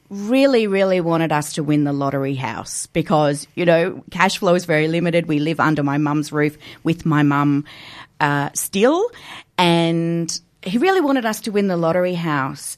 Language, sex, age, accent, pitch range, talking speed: English, female, 40-59, Australian, 150-190 Hz, 175 wpm